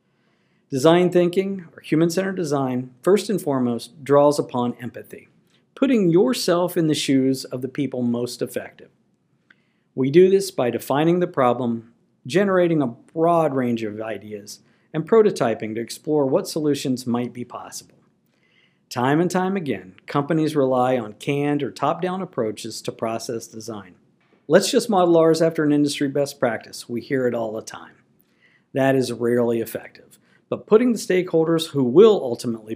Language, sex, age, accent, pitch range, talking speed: English, male, 50-69, American, 120-170 Hz, 150 wpm